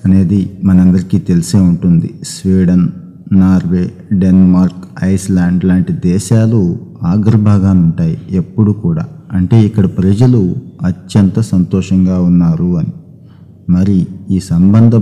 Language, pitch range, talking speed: Telugu, 95-110 Hz, 95 wpm